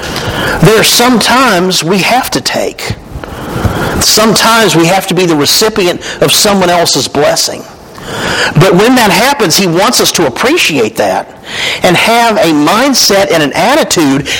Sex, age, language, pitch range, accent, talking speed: male, 50-69, English, 155-210 Hz, American, 145 wpm